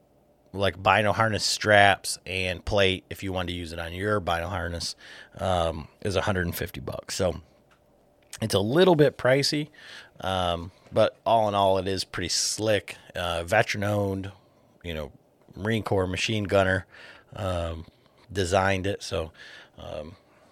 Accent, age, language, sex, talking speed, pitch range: American, 30-49, English, male, 145 wpm, 90-110 Hz